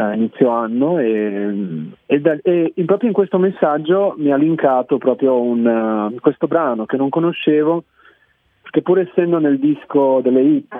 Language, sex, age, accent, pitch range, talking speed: Italian, male, 30-49, native, 115-150 Hz, 150 wpm